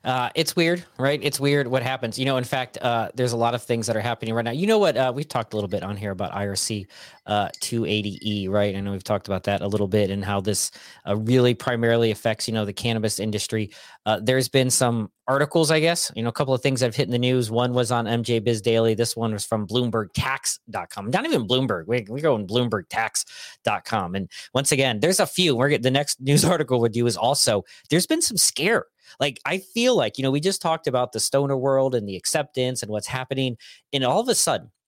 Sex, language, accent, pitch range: male, English, American, 105-135 Hz